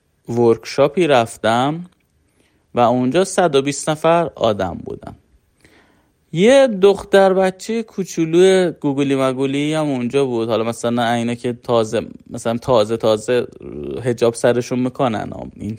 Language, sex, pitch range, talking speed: Persian, male, 125-170 Hz, 110 wpm